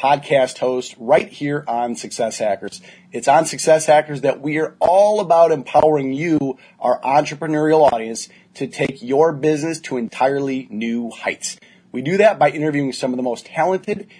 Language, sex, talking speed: English, male, 165 wpm